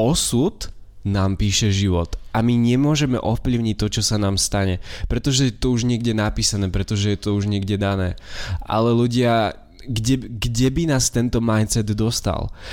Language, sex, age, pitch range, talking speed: Slovak, male, 20-39, 100-120 Hz, 160 wpm